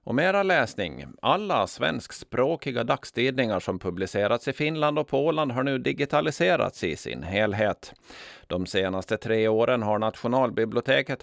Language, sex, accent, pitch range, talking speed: Swedish, male, native, 105-140 Hz, 130 wpm